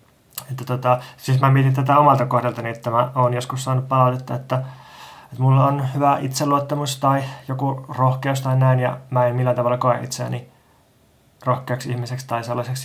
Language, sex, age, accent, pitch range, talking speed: Finnish, male, 20-39, native, 120-135 Hz, 165 wpm